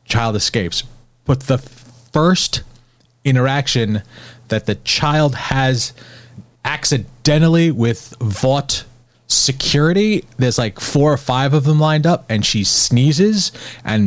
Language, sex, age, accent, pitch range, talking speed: English, male, 30-49, American, 105-130 Hz, 115 wpm